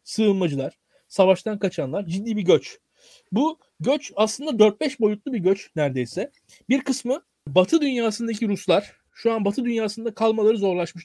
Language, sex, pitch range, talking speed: Turkish, male, 170-230 Hz, 135 wpm